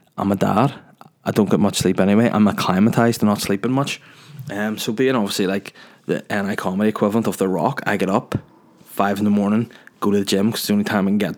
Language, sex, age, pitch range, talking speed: English, male, 20-39, 100-110 Hz, 245 wpm